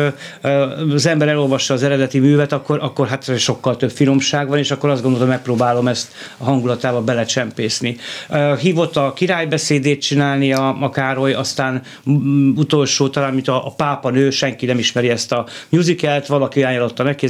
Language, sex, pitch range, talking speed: Hungarian, male, 125-145 Hz, 155 wpm